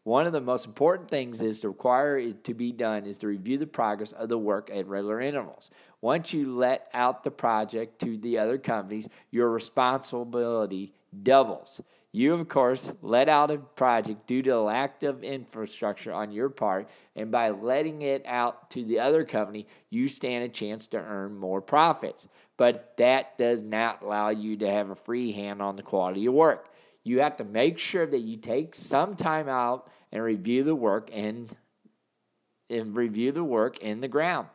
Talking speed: 190 wpm